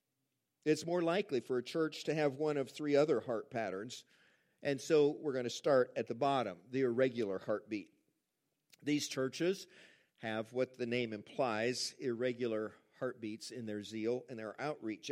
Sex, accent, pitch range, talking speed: male, American, 125-175 Hz, 165 wpm